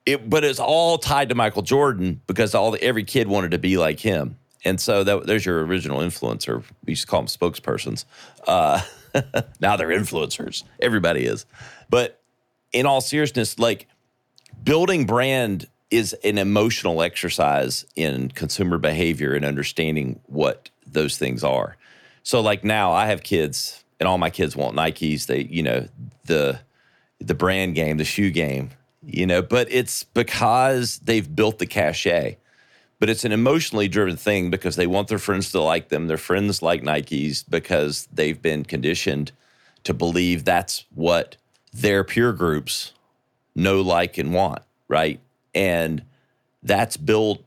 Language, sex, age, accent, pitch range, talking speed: English, male, 40-59, American, 85-120 Hz, 160 wpm